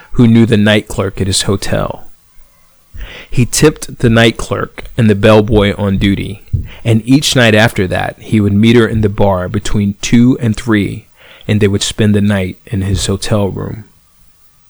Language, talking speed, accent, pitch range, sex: English, 180 wpm, American, 95-115 Hz, male